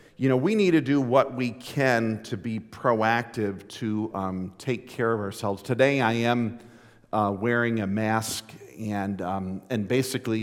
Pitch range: 105-140 Hz